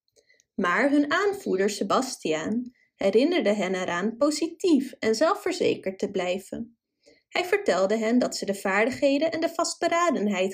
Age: 20-39